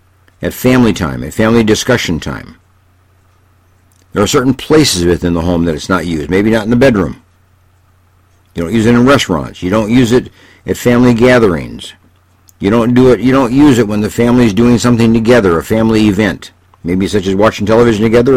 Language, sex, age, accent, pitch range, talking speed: English, male, 60-79, American, 90-105 Hz, 195 wpm